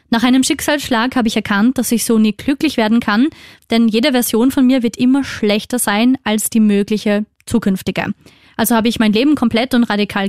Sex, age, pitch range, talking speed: female, 20-39, 210-255 Hz, 200 wpm